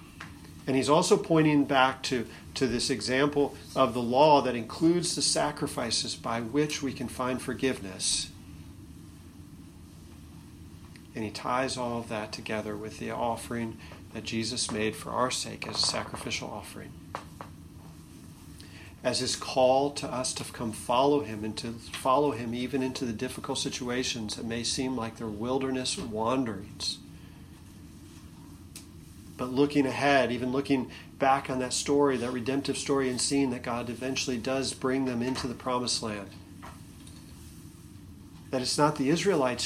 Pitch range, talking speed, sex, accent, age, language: 110-145 Hz, 145 wpm, male, American, 40-59, English